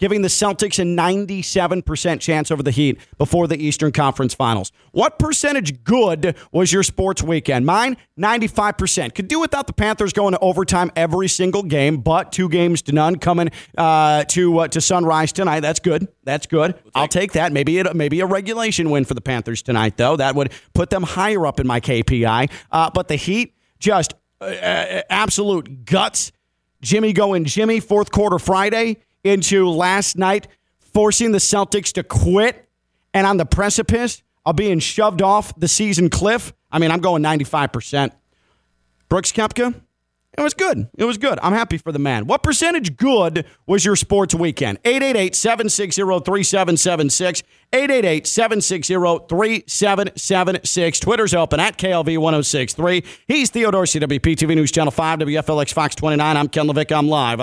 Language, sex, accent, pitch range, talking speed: English, male, American, 150-200 Hz, 160 wpm